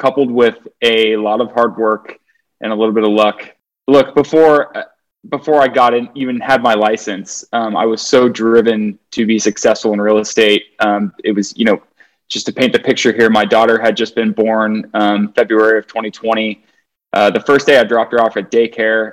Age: 20-39